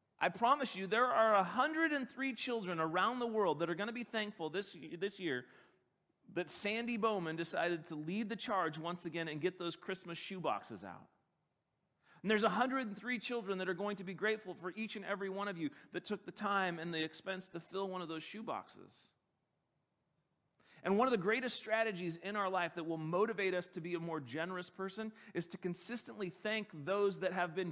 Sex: male